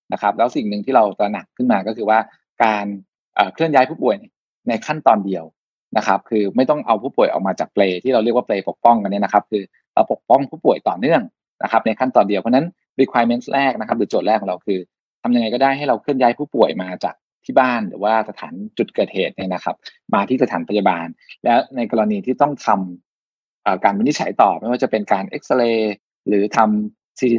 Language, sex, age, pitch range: Thai, male, 20-39, 105-130 Hz